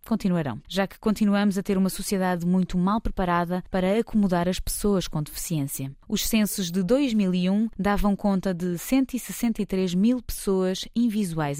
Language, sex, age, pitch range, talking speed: Portuguese, female, 20-39, 180-225 Hz, 145 wpm